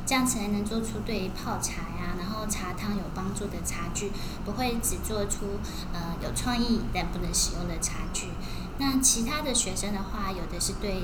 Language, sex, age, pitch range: Chinese, female, 10-29, 185-230 Hz